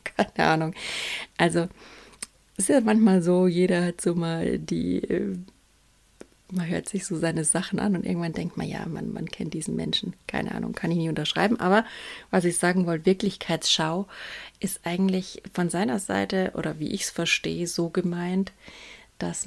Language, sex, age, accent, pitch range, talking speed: German, female, 30-49, German, 165-190 Hz, 170 wpm